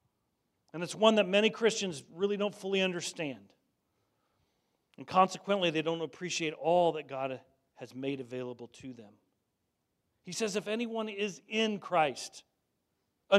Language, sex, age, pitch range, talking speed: English, male, 40-59, 150-195 Hz, 140 wpm